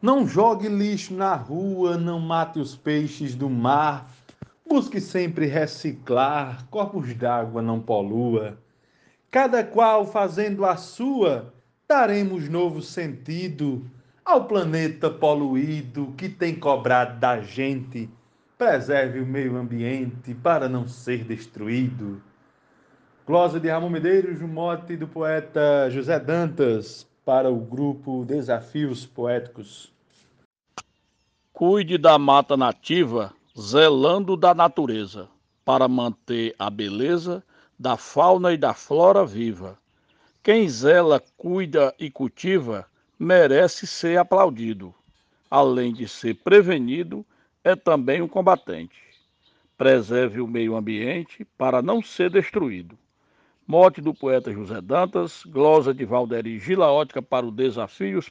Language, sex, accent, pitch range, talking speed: Portuguese, male, Brazilian, 125-175 Hz, 115 wpm